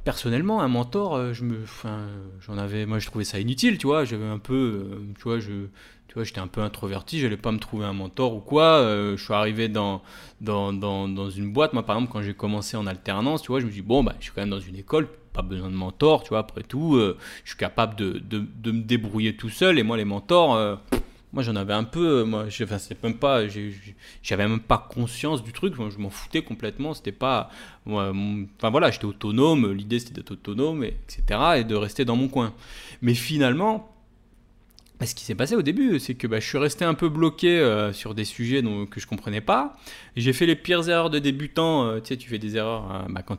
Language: French